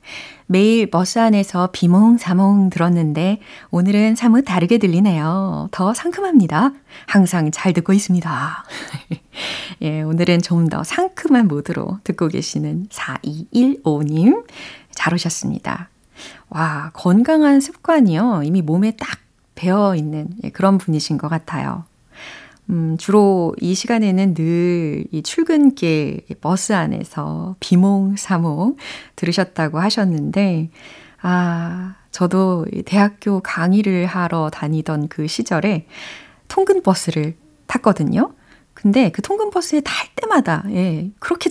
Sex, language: female, Korean